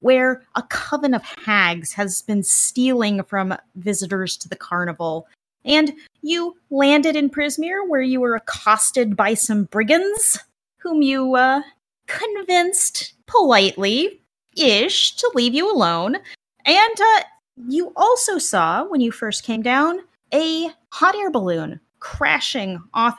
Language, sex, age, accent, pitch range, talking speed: English, female, 30-49, American, 200-310 Hz, 130 wpm